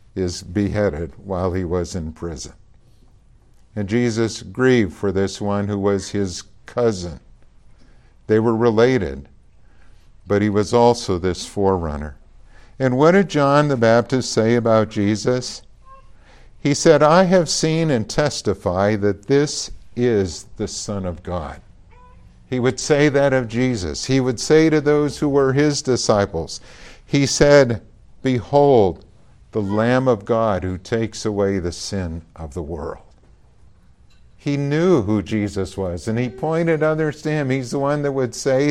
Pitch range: 100-135 Hz